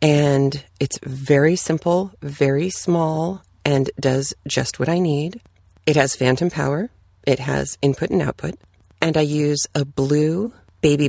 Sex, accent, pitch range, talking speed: female, American, 100-165 Hz, 145 wpm